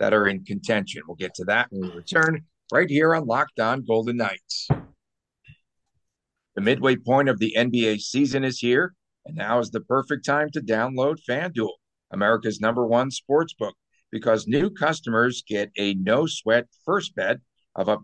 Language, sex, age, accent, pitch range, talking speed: English, male, 50-69, American, 105-135 Hz, 165 wpm